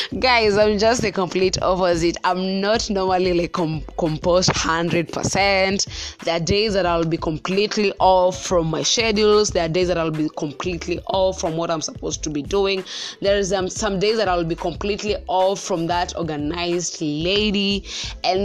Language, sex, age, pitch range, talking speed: English, female, 20-39, 175-215 Hz, 180 wpm